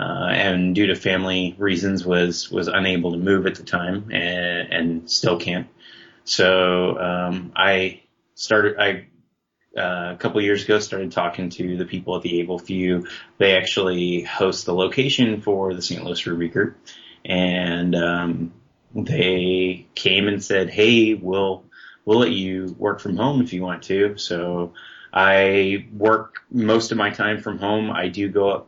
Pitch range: 90-105 Hz